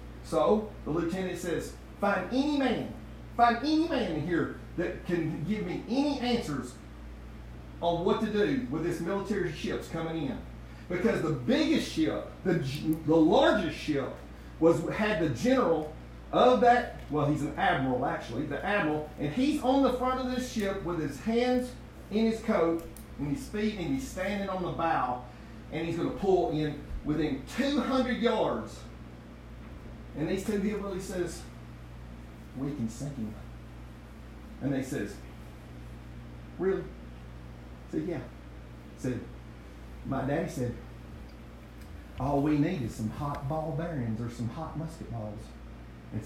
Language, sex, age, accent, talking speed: English, male, 40-59, American, 150 wpm